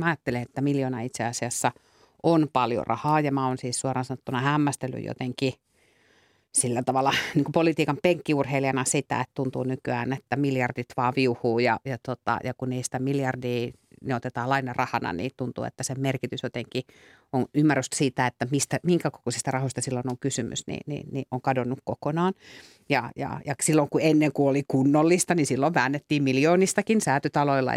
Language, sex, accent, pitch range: Finnish, female, native, 125-145 Hz